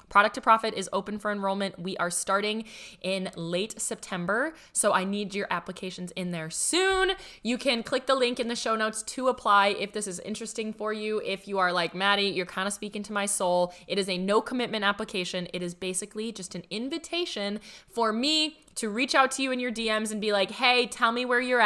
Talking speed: 220 wpm